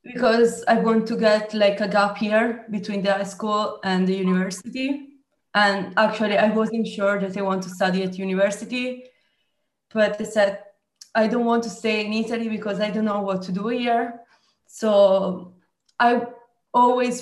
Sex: female